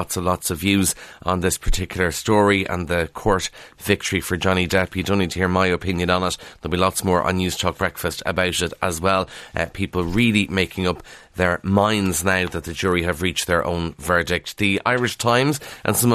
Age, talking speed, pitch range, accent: 30-49, 215 wpm, 90-110 Hz, Irish